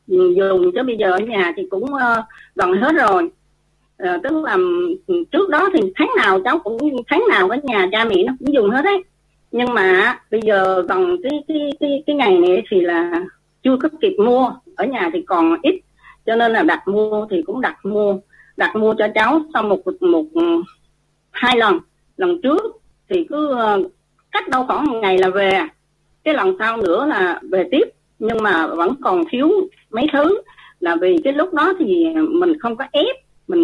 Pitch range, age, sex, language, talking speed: 215-350 Hz, 30-49, female, Vietnamese, 190 wpm